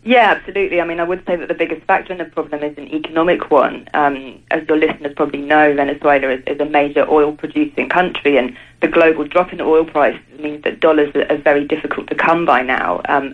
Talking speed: 225 wpm